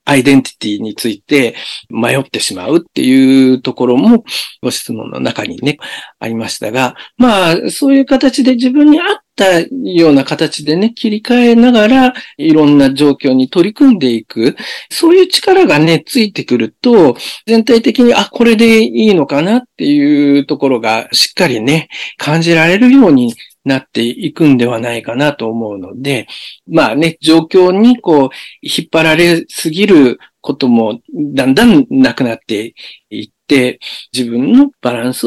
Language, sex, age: Japanese, male, 50-69